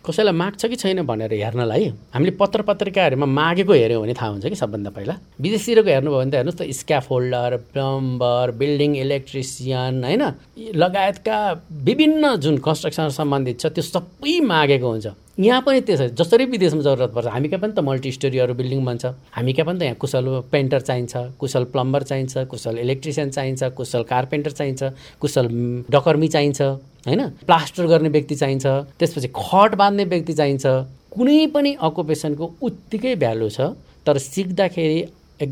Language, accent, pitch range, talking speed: English, Indian, 125-170 Hz, 95 wpm